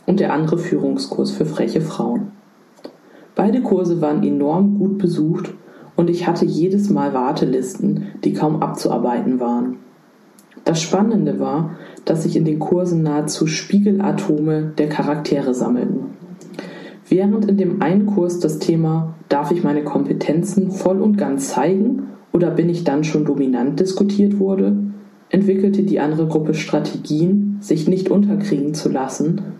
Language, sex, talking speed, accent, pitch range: German, female, 140 wpm, German, 155-195 Hz